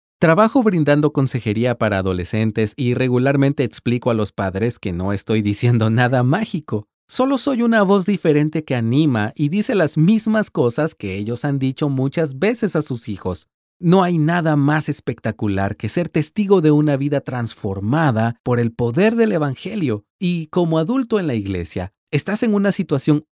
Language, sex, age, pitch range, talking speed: Spanish, male, 40-59, 105-155 Hz, 165 wpm